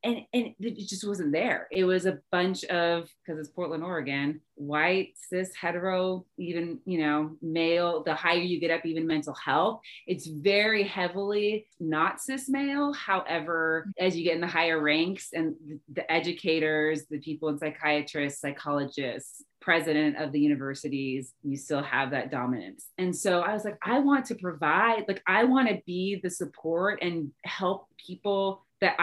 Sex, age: female, 30-49